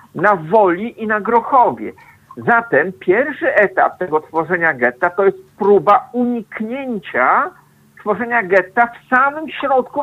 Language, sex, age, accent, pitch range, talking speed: Polish, male, 50-69, native, 185-245 Hz, 120 wpm